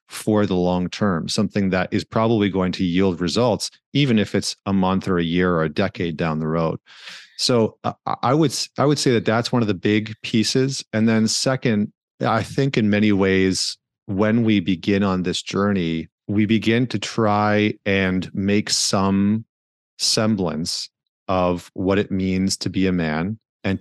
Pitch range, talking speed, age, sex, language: 90-105 Hz, 175 wpm, 30-49, male, English